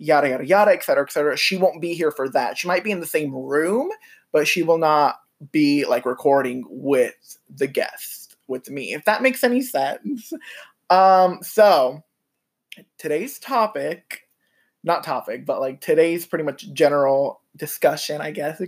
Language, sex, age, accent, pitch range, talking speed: English, male, 20-39, American, 145-205 Hz, 170 wpm